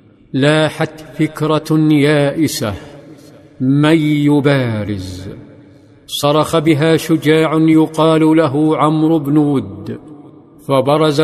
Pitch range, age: 145-160 Hz, 50-69